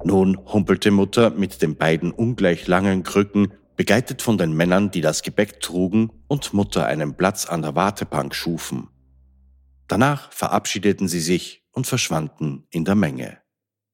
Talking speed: 145 wpm